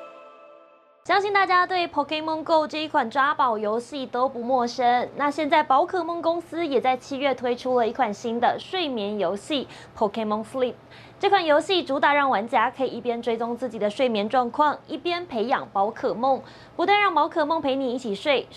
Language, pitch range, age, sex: Chinese, 230-320 Hz, 20-39, female